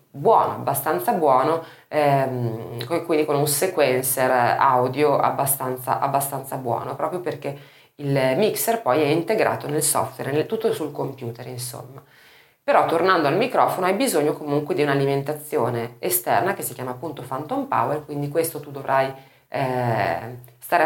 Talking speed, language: 135 wpm, Italian